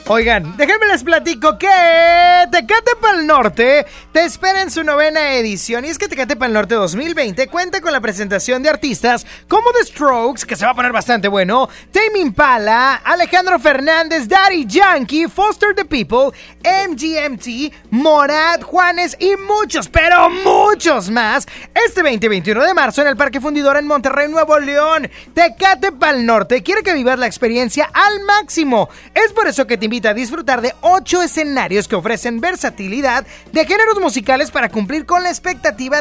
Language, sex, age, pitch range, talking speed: Spanish, male, 30-49, 245-345 Hz, 165 wpm